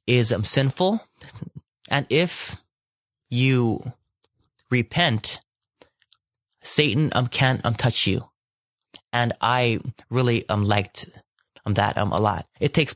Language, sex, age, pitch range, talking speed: English, male, 20-39, 105-125 Hz, 115 wpm